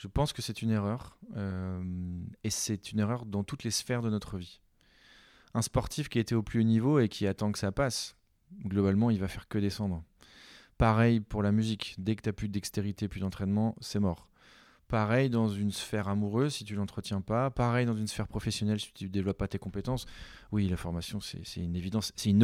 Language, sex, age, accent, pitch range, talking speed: French, male, 20-39, French, 100-120 Hz, 220 wpm